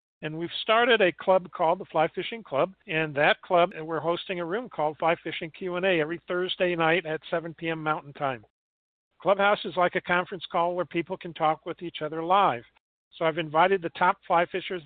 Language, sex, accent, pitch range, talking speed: English, male, American, 155-185 Hz, 200 wpm